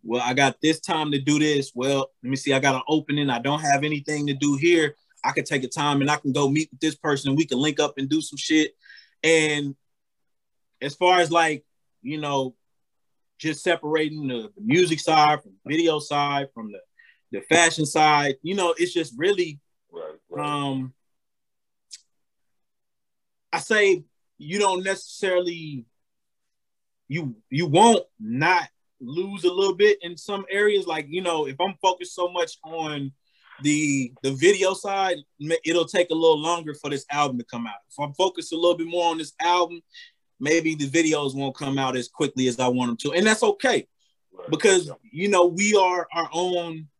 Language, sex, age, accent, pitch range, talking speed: English, male, 20-39, American, 140-175 Hz, 185 wpm